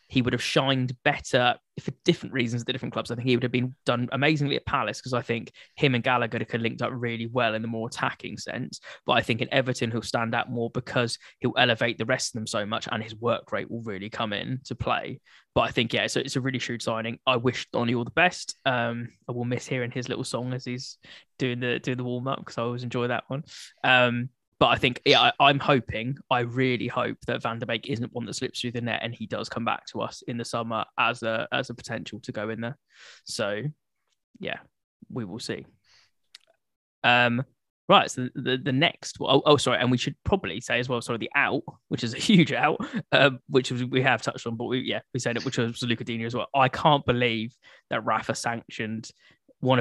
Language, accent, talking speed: English, British, 240 wpm